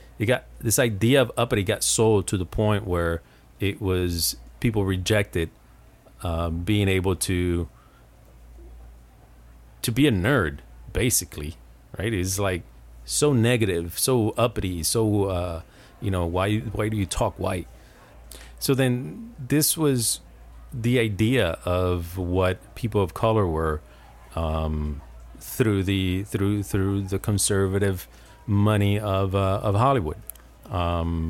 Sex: male